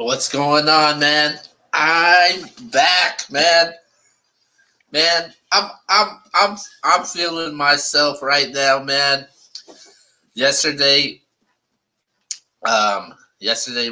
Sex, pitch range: male, 105-155 Hz